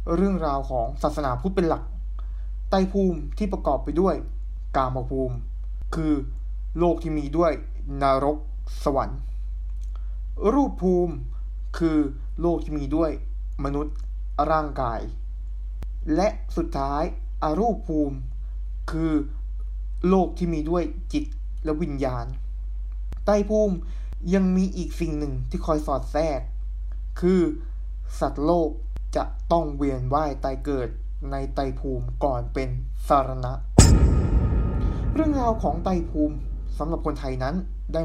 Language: Thai